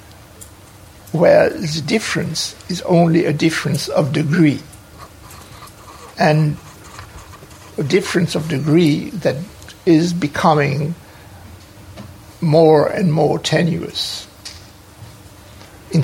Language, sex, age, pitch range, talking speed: English, male, 60-79, 105-165 Hz, 80 wpm